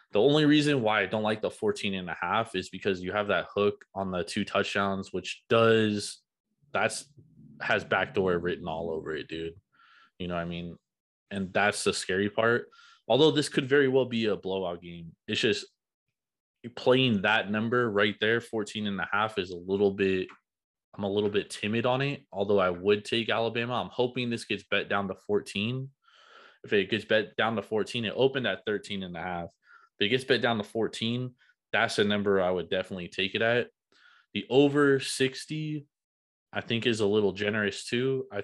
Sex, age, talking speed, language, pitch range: male, 20-39, 200 wpm, English, 95-115 Hz